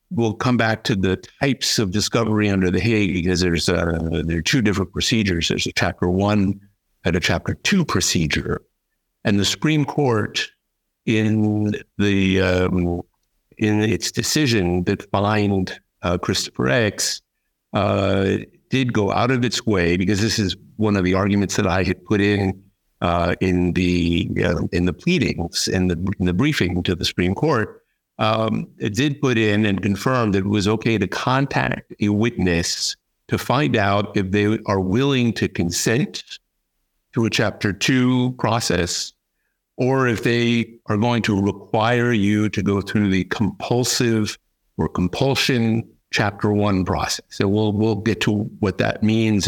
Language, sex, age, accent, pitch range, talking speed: English, male, 60-79, American, 95-115 Hz, 165 wpm